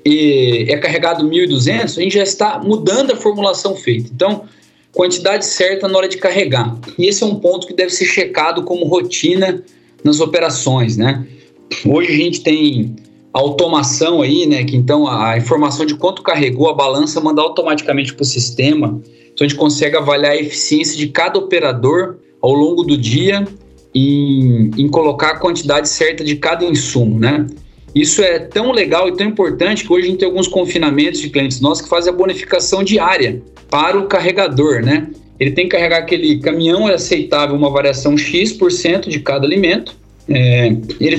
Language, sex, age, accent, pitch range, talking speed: Portuguese, male, 20-39, Brazilian, 145-195 Hz, 170 wpm